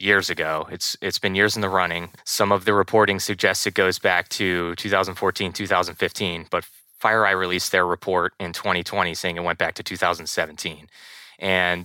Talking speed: 170 wpm